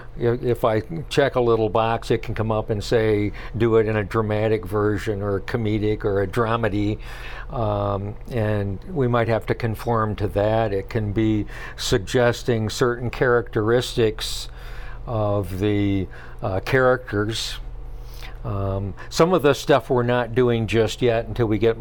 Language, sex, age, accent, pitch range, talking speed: English, male, 60-79, American, 105-125 Hz, 150 wpm